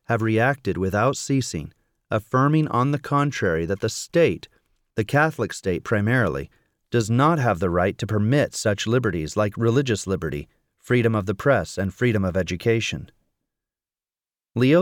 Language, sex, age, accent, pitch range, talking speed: English, male, 40-59, American, 105-130 Hz, 145 wpm